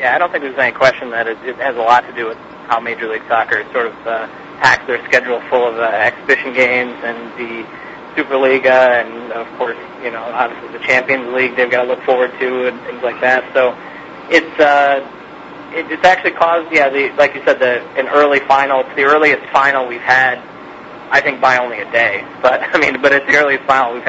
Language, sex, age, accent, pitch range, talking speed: English, male, 30-49, American, 130-165 Hz, 225 wpm